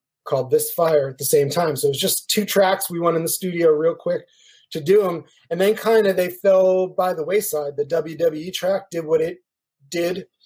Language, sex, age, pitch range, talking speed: English, male, 30-49, 155-200 Hz, 225 wpm